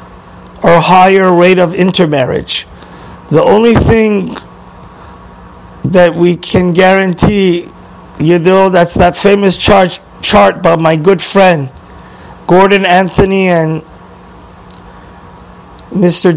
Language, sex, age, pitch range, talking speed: English, male, 50-69, 165-190 Hz, 100 wpm